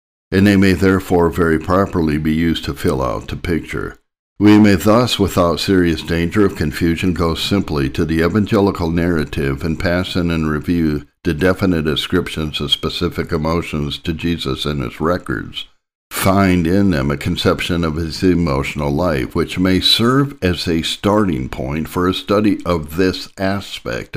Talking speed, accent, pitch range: 160 wpm, American, 75-95 Hz